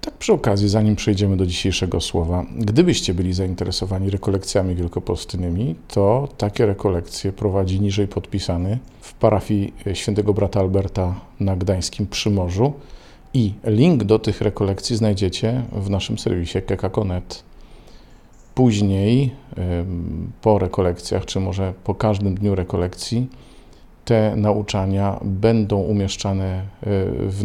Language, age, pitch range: Polish, 40-59, 95-110 Hz